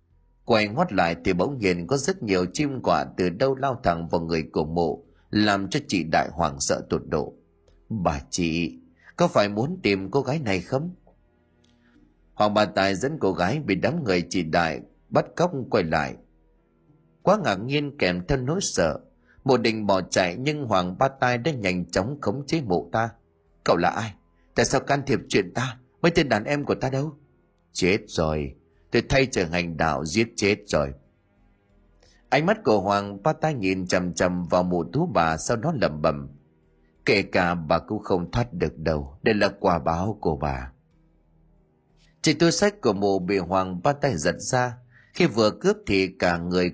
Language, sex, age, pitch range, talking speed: Vietnamese, male, 30-49, 85-125 Hz, 190 wpm